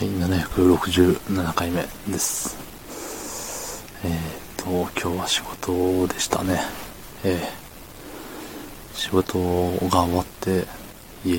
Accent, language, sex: native, Japanese, male